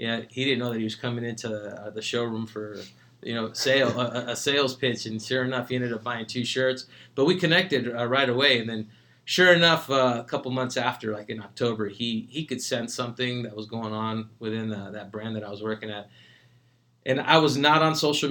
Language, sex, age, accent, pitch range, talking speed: English, male, 20-39, American, 110-130 Hz, 220 wpm